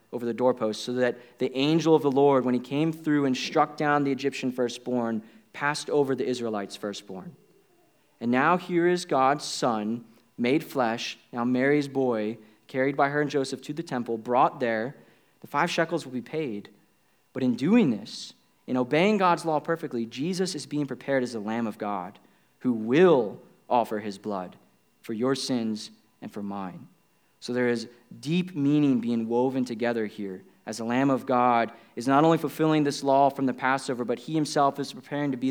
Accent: American